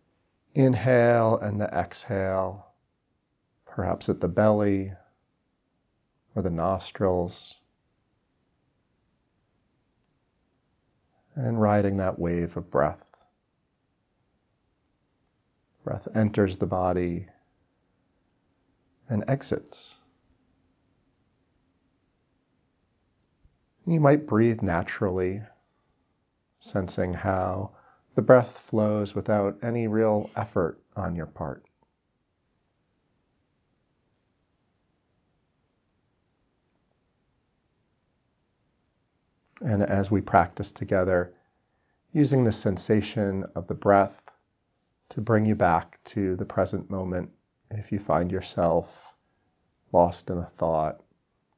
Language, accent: English, American